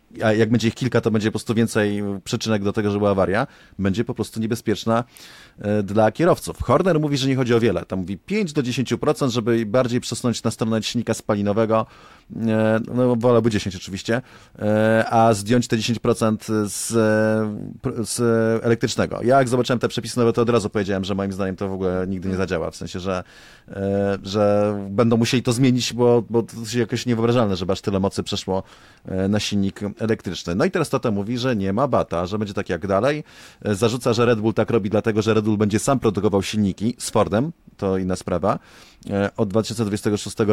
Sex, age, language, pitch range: male, 30-49, Polish, 100-120 Hz